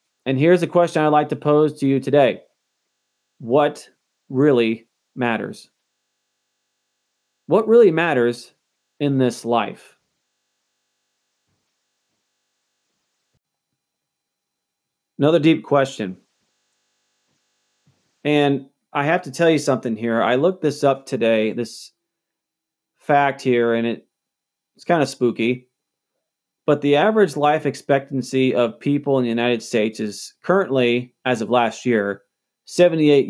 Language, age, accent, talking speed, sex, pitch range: English, 40-59, American, 115 wpm, male, 125-170 Hz